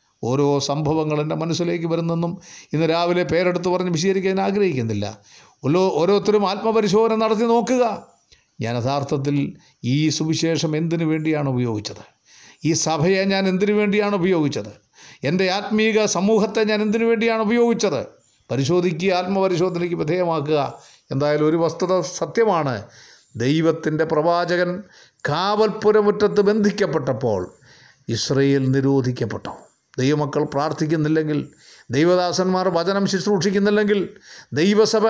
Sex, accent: male, native